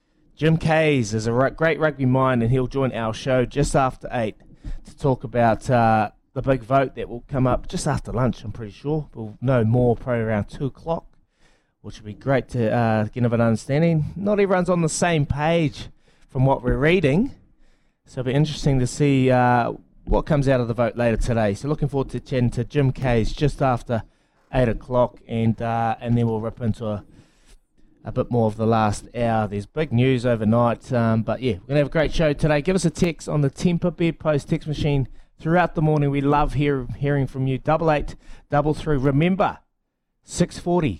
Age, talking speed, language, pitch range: 20-39, 205 wpm, English, 120-155 Hz